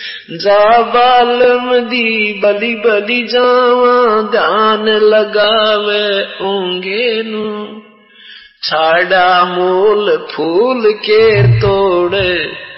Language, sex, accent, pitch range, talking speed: Hindi, male, native, 170-215 Hz, 60 wpm